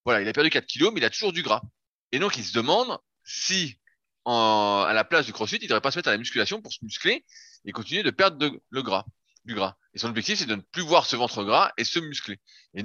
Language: French